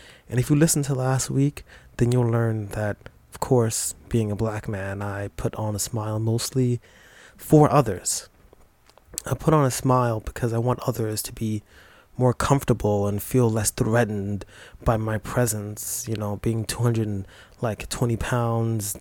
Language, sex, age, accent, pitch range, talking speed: English, male, 20-39, American, 105-125 Hz, 165 wpm